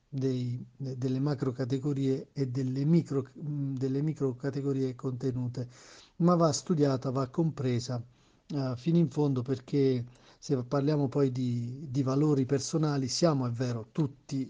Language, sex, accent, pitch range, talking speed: Italian, male, native, 130-150 Hz, 125 wpm